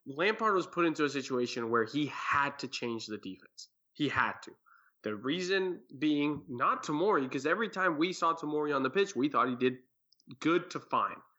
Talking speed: 195 wpm